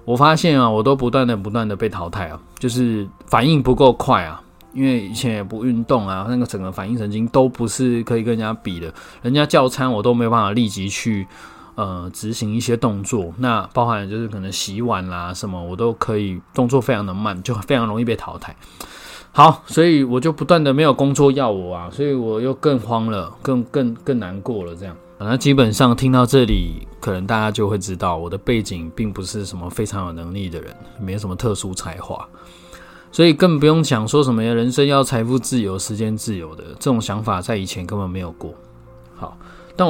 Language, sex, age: Chinese, male, 20-39